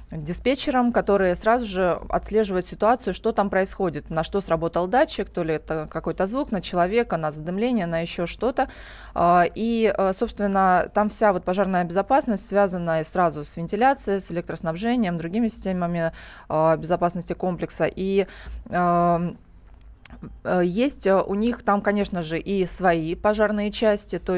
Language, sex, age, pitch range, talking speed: Russian, female, 20-39, 170-205 Hz, 130 wpm